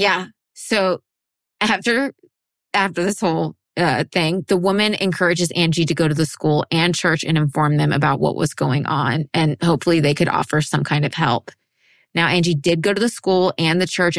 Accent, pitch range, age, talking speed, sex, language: American, 155-185 Hz, 20-39, 195 wpm, female, English